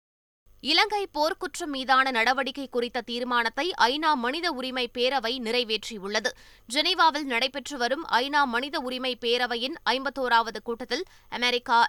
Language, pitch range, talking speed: Tamil, 240-300 Hz, 110 wpm